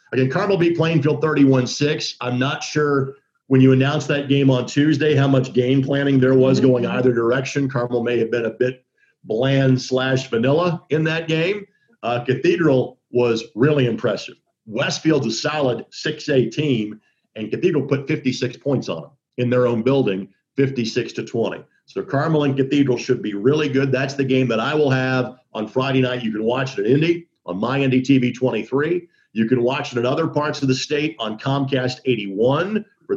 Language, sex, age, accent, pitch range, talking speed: English, male, 50-69, American, 125-150 Hz, 185 wpm